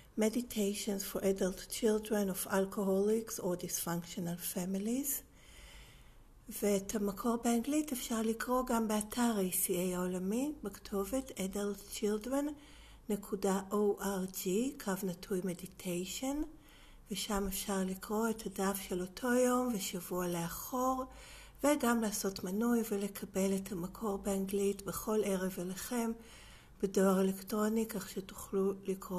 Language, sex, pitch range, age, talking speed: Hebrew, female, 190-225 Hz, 60-79, 95 wpm